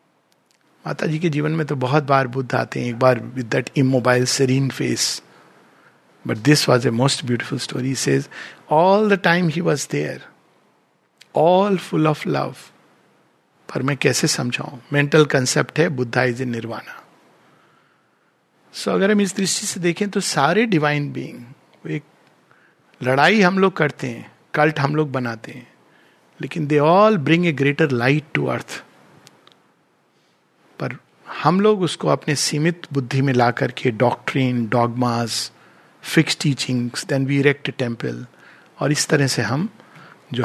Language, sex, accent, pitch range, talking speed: Hindi, male, native, 125-160 Hz, 145 wpm